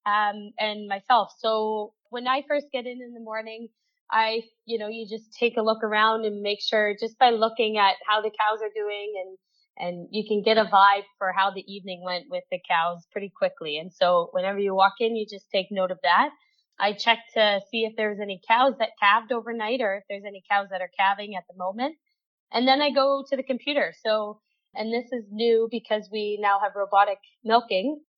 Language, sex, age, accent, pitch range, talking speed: English, female, 20-39, American, 200-235 Hz, 215 wpm